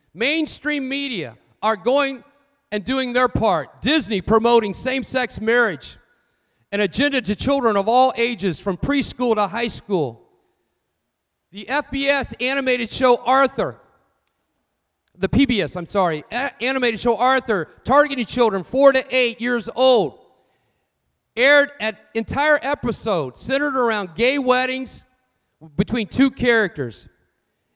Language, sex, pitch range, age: English, male, 210-275 Hz, 40-59